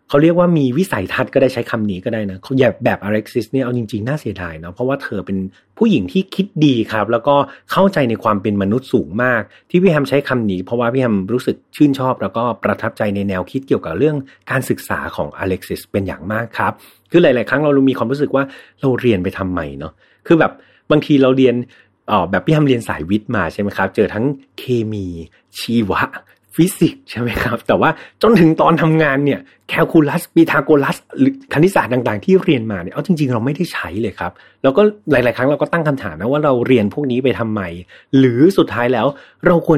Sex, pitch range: male, 110-150 Hz